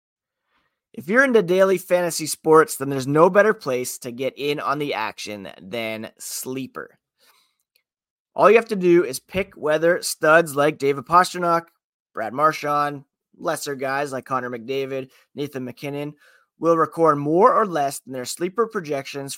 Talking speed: 150 wpm